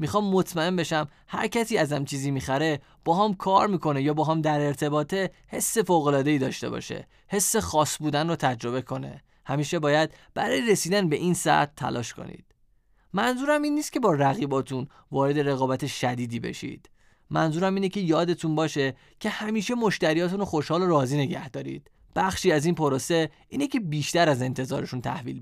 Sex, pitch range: male, 135-195 Hz